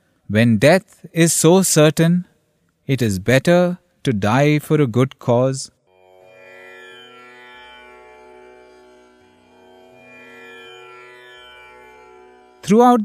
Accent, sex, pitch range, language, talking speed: Indian, male, 120-165 Hz, English, 70 wpm